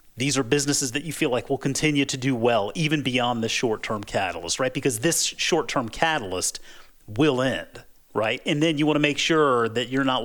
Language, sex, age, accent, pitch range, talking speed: English, male, 40-59, American, 115-145 Hz, 215 wpm